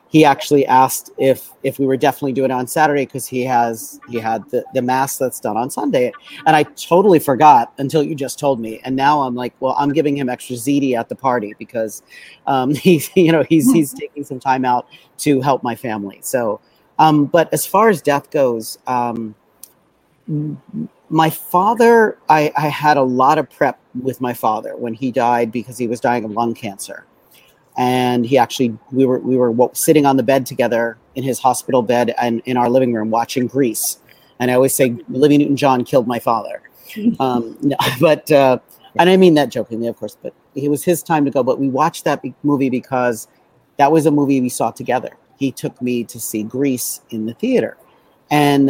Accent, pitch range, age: American, 120-145 Hz, 40-59